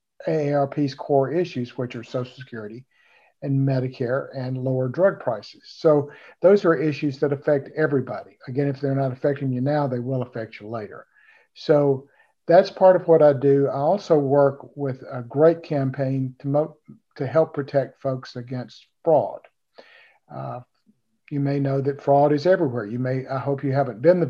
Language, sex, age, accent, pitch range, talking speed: English, male, 50-69, American, 130-150 Hz, 175 wpm